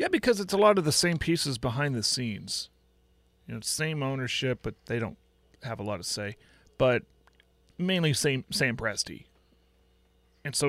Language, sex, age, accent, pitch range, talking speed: English, male, 30-49, American, 105-130 Hz, 175 wpm